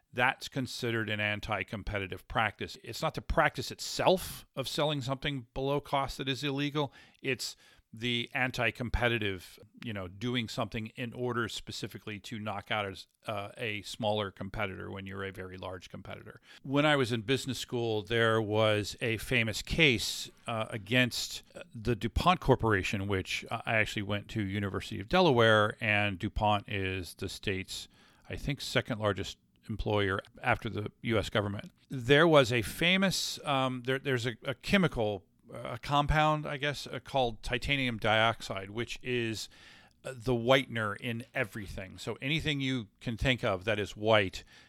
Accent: American